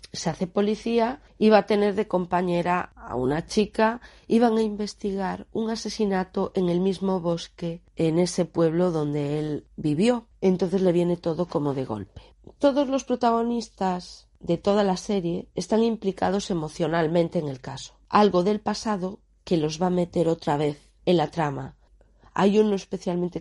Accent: Spanish